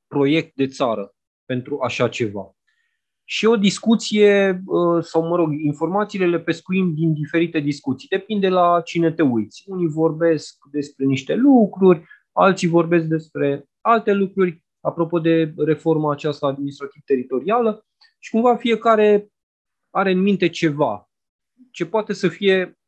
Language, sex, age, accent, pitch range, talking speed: Romanian, male, 20-39, native, 140-190 Hz, 130 wpm